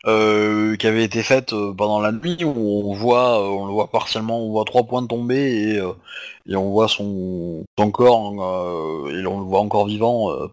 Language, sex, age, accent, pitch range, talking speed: French, male, 30-49, French, 105-130 Hz, 220 wpm